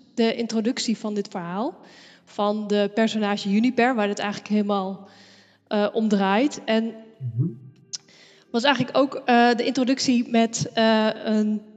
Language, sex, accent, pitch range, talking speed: Dutch, female, Dutch, 200-240 Hz, 125 wpm